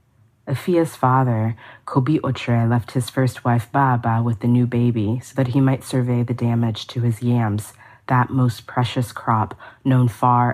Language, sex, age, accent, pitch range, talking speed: English, female, 30-49, American, 115-130 Hz, 165 wpm